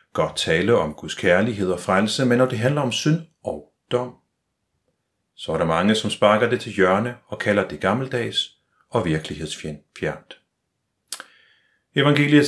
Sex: male